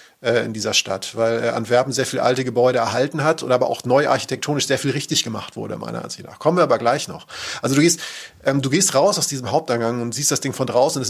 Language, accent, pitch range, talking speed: German, German, 125-150 Hz, 255 wpm